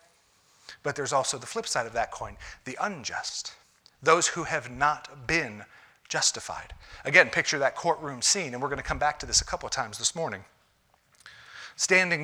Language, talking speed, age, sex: English, 180 wpm, 40-59, male